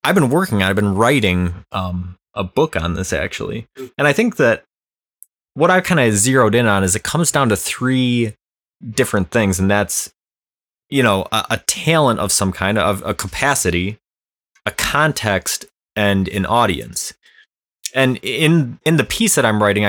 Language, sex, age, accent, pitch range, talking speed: English, male, 20-39, American, 95-135 Hz, 170 wpm